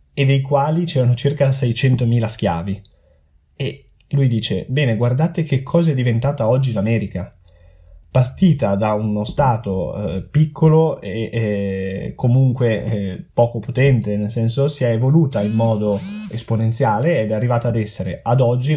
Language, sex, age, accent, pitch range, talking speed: Italian, male, 20-39, native, 105-140 Hz, 145 wpm